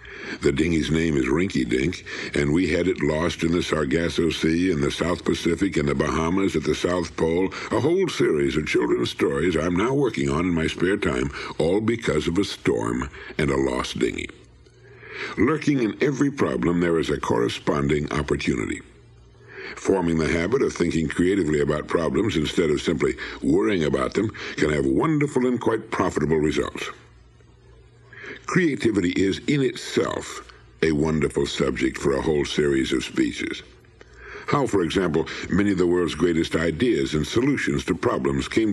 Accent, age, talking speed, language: American, 60-79, 165 wpm, English